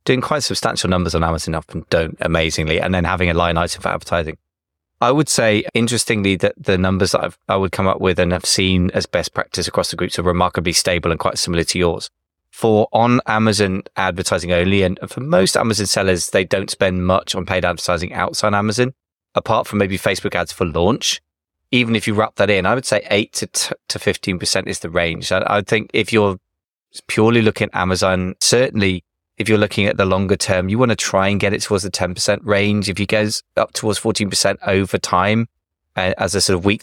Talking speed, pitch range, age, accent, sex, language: 215 wpm, 90-110 Hz, 20-39, British, male, English